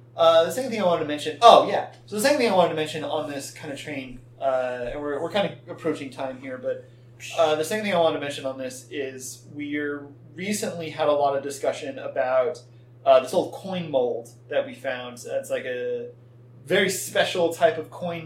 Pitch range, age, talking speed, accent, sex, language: 130-170 Hz, 30-49, 225 wpm, American, male, English